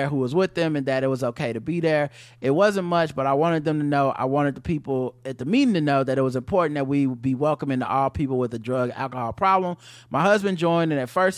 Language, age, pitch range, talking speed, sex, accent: English, 30-49, 125-165 Hz, 280 wpm, male, American